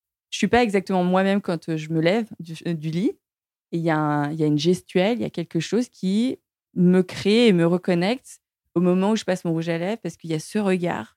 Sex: female